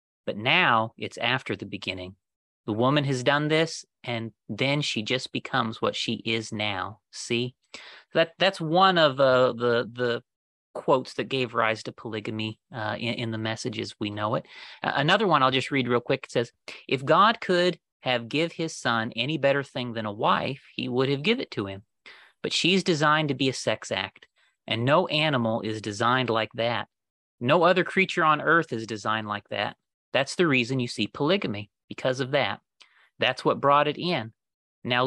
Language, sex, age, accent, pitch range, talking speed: English, male, 30-49, American, 110-150 Hz, 190 wpm